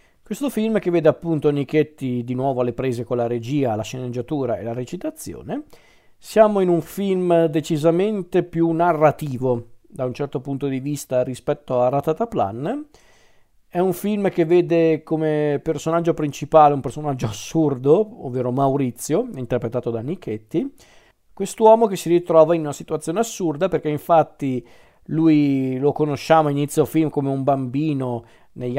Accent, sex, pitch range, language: native, male, 125-160 Hz, Italian